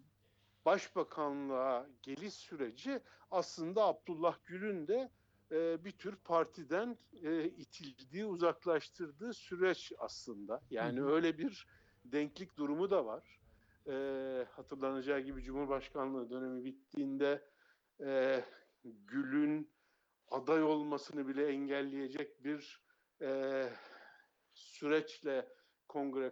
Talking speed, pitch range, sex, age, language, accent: 80 wpm, 130-175 Hz, male, 60-79, German, Turkish